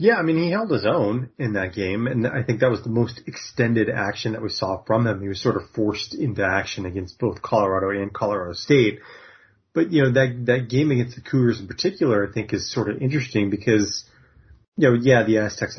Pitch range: 100-130 Hz